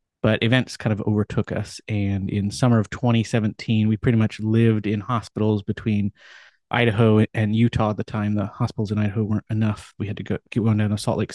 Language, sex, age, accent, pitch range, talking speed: English, male, 30-49, American, 105-115 Hz, 210 wpm